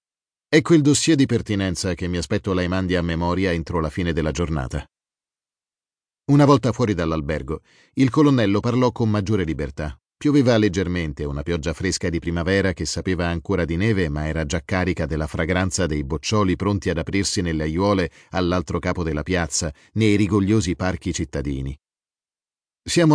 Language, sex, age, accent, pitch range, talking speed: Italian, male, 40-59, native, 80-105 Hz, 160 wpm